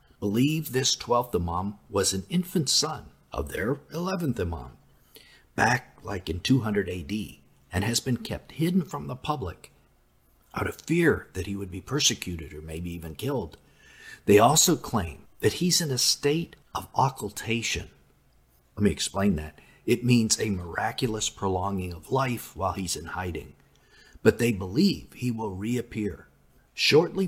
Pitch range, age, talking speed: 90-130 Hz, 50-69, 150 wpm